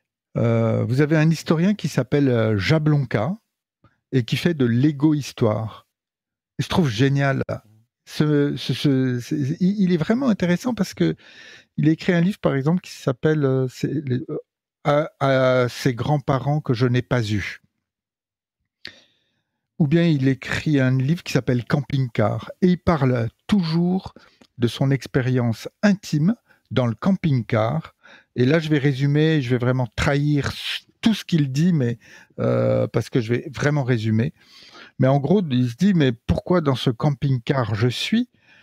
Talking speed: 155 wpm